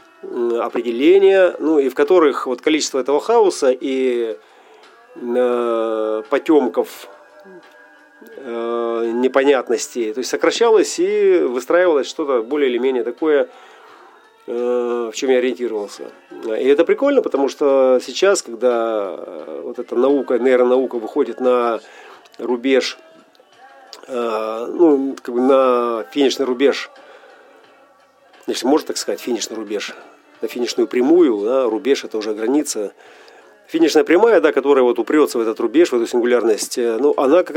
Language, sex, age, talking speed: Russian, male, 40-59, 120 wpm